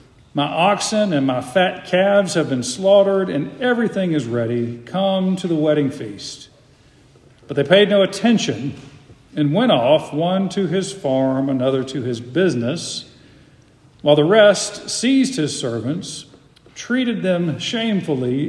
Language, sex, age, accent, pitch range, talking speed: English, male, 50-69, American, 140-195 Hz, 140 wpm